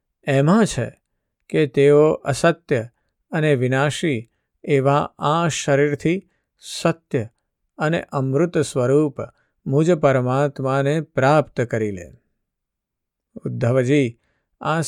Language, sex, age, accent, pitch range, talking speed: Gujarati, male, 50-69, native, 130-155 Hz, 85 wpm